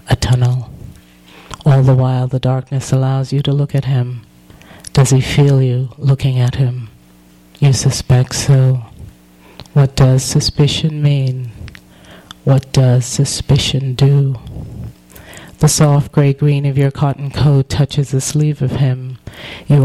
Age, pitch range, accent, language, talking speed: 40-59, 125-140 Hz, American, English, 135 wpm